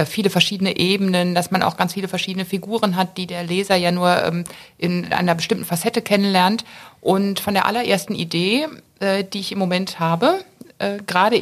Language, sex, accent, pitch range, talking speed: German, female, German, 180-215 Hz, 170 wpm